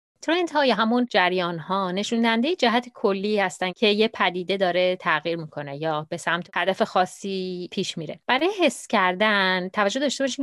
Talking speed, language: 155 wpm, Persian